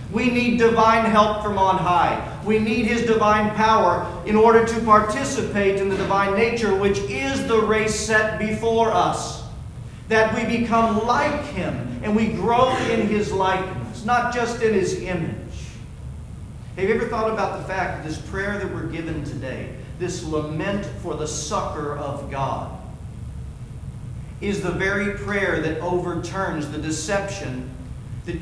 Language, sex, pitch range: English, male, 145-210 Hz